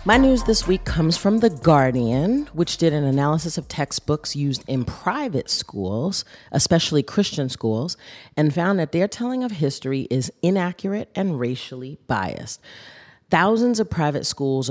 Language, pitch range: English, 135-170 Hz